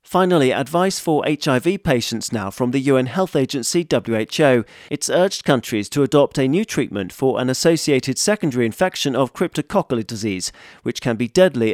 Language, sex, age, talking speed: English, male, 40-59, 165 wpm